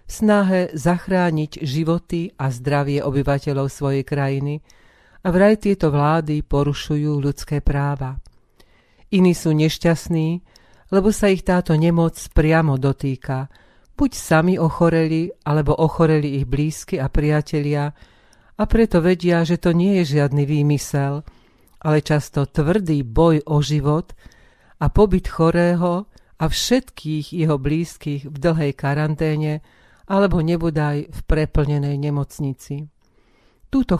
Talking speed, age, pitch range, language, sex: 115 wpm, 40-59, 140-170 Hz, Slovak, female